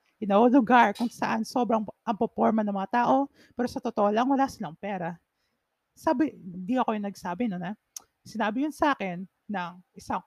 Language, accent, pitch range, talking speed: Filipino, native, 190-255 Hz, 180 wpm